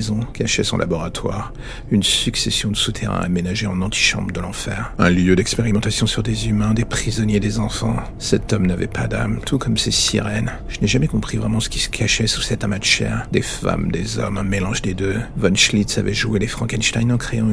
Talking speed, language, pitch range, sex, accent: 210 wpm, French, 100-115 Hz, male, French